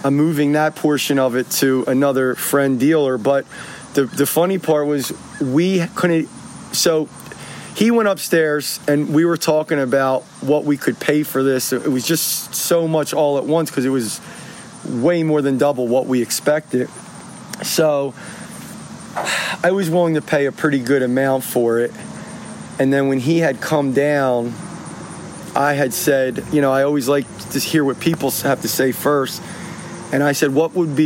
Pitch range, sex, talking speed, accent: 135-165 Hz, male, 180 wpm, American